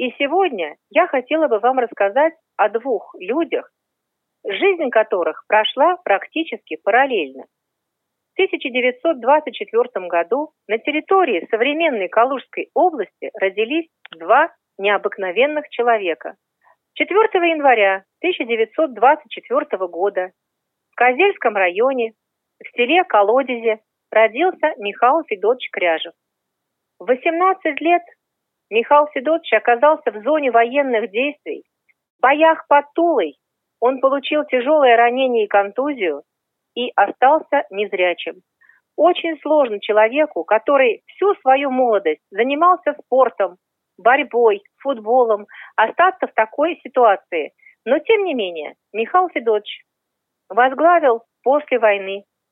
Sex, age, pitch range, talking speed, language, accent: female, 40-59, 220-330 Hz, 100 wpm, Russian, native